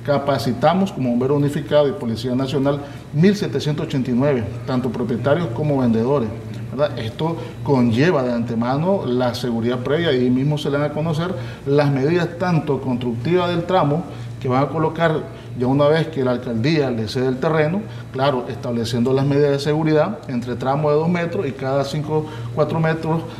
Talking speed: 160 wpm